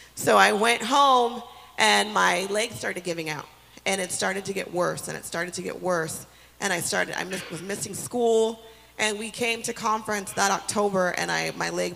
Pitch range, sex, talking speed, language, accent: 160-210 Hz, female, 195 wpm, English, American